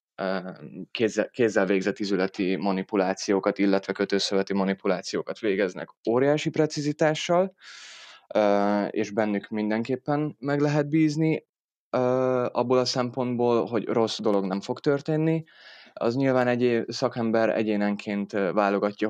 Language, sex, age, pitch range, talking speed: Hungarian, male, 20-39, 100-120 Hz, 100 wpm